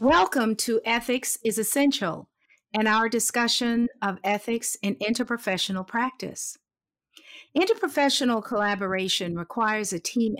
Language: English